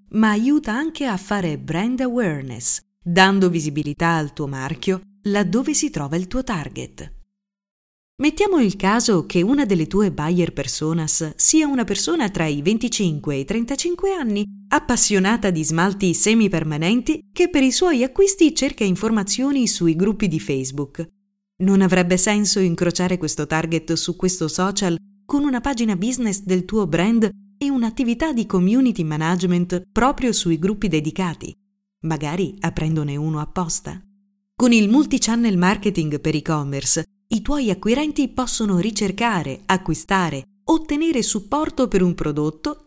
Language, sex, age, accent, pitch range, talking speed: Italian, female, 30-49, native, 170-245 Hz, 135 wpm